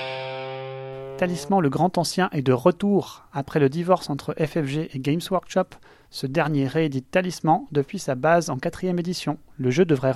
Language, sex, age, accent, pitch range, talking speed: French, male, 30-49, French, 140-180 Hz, 165 wpm